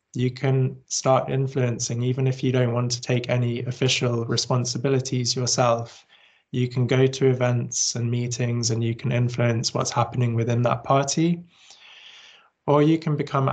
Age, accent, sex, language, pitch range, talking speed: 20-39, British, male, Finnish, 120-135 Hz, 155 wpm